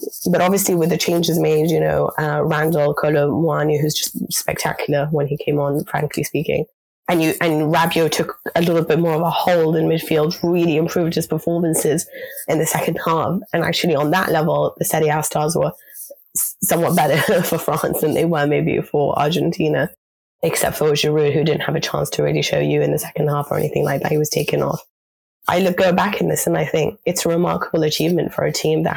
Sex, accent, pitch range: female, British, 150-175 Hz